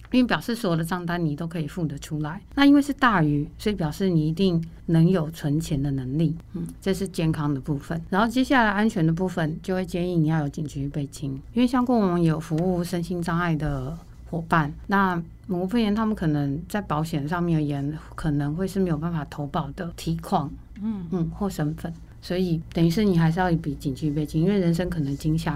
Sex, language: female, Chinese